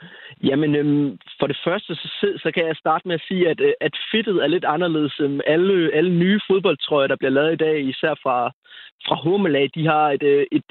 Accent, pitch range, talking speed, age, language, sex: native, 145-175 Hz, 215 wpm, 30-49, Danish, male